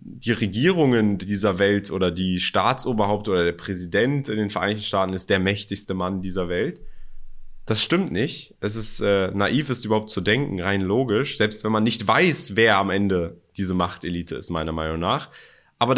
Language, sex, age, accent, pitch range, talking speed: German, male, 20-39, German, 100-130 Hz, 180 wpm